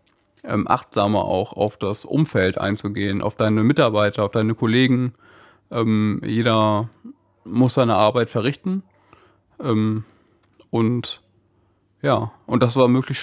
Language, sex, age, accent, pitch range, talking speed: German, male, 20-39, German, 110-125 Hz, 105 wpm